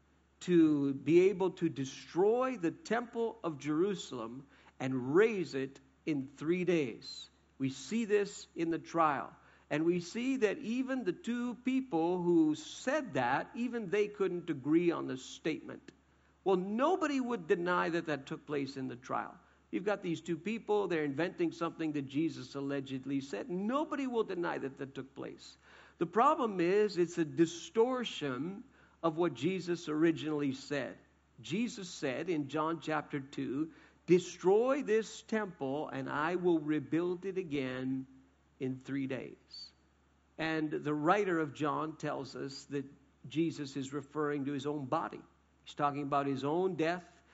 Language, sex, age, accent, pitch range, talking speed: English, male, 50-69, American, 140-195 Hz, 150 wpm